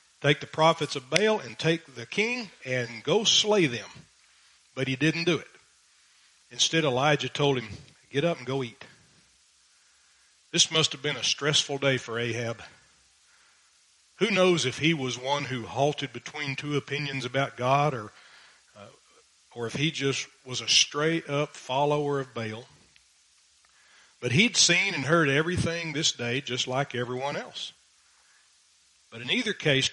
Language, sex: English, male